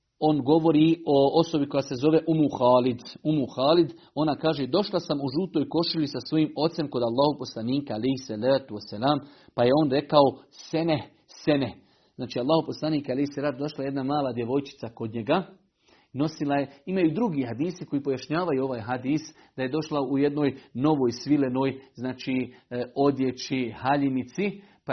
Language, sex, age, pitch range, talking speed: Croatian, male, 40-59, 135-160 Hz, 155 wpm